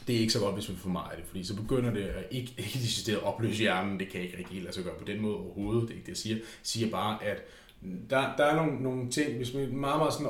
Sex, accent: male, native